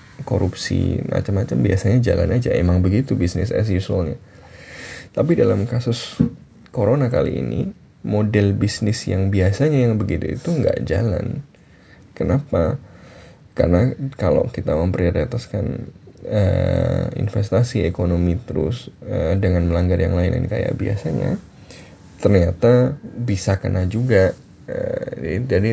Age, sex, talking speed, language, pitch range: 20-39, male, 110 wpm, Indonesian, 90-110 Hz